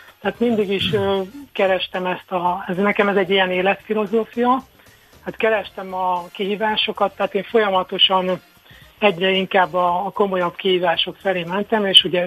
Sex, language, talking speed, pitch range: male, Hungarian, 145 wpm, 180-200 Hz